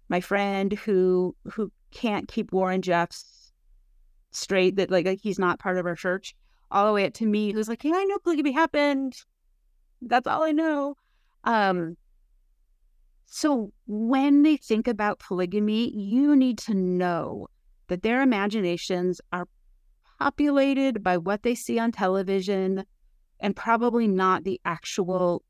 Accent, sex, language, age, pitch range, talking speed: American, female, English, 30-49, 180-230 Hz, 145 wpm